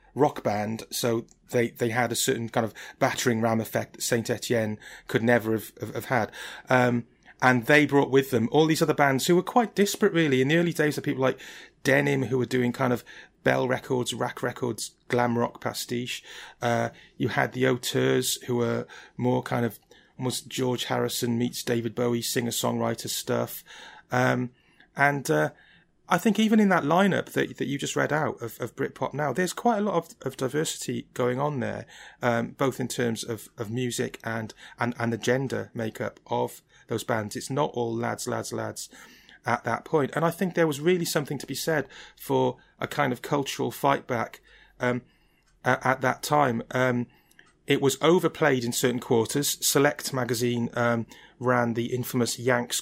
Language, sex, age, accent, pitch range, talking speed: English, male, 30-49, British, 120-145 Hz, 190 wpm